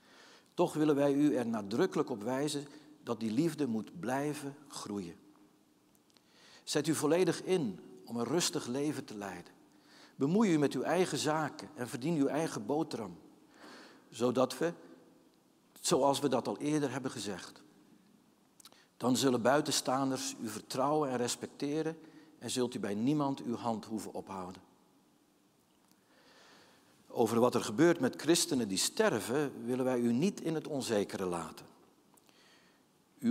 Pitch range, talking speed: 120-155 Hz, 140 wpm